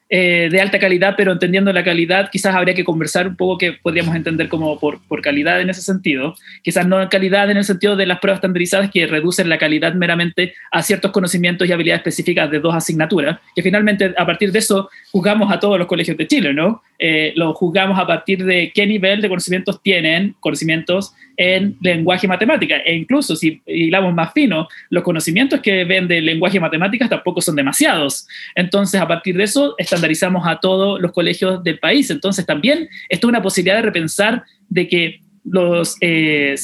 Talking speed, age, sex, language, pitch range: 190 wpm, 30-49, male, Spanish, 170-200 Hz